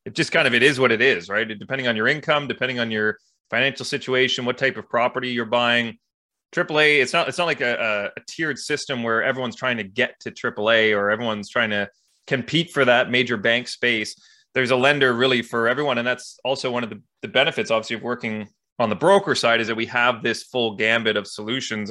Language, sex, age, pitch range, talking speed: English, male, 30-49, 110-130 Hz, 225 wpm